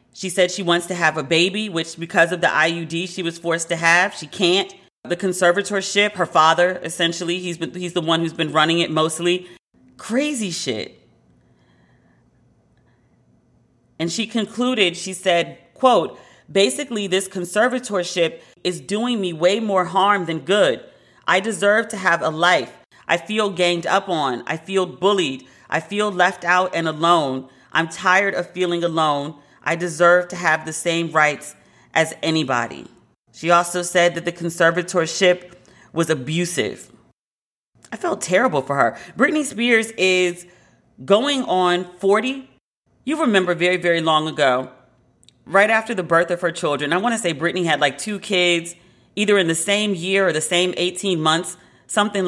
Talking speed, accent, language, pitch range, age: 160 wpm, American, English, 165-195 Hz, 40-59